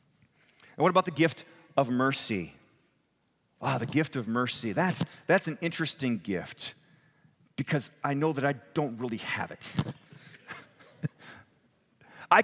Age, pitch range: 40-59, 140-200 Hz